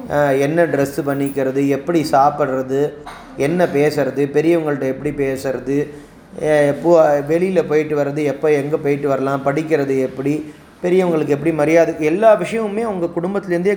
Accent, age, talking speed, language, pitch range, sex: native, 30-49, 120 wpm, Tamil, 140-180 Hz, male